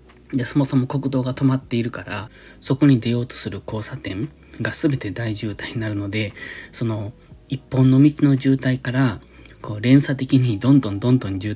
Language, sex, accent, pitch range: Japanese, male, native, 105-135 Hz